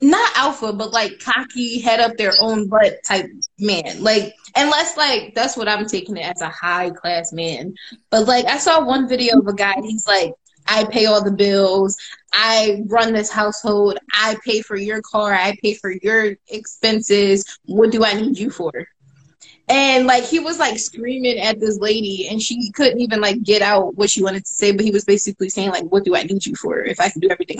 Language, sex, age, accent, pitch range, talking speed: English, female, 20-39, American, 205-255 Hz, 215 wpm